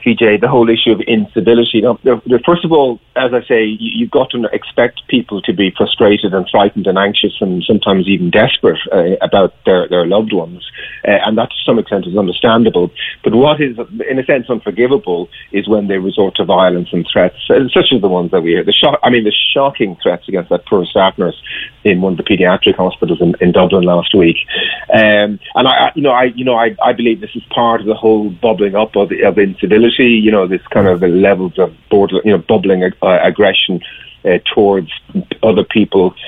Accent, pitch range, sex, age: British, 95-115 Hz, male, 40-59